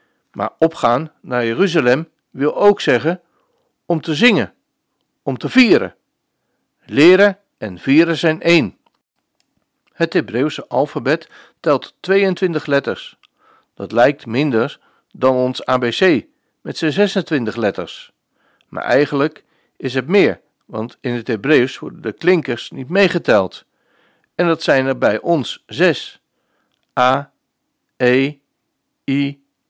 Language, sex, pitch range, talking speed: Dutch, male, 130-175 Hz, 115 wpm